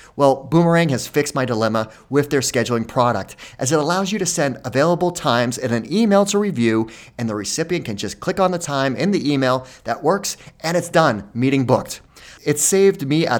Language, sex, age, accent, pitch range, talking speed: English, male, 30-49, American, 115-165 Hz, 205 wpm